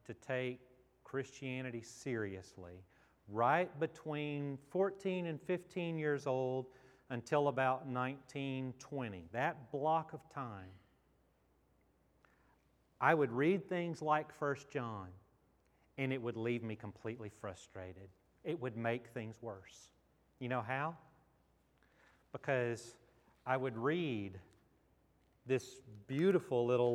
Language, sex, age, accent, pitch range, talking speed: English, male, 40-59, American, 120-150 Hz, 105 wpm